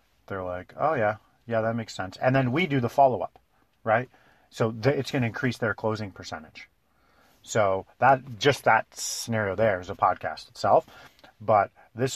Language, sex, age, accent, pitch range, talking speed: English, male, 40-59, American, 105-130 Hz, 180 wpm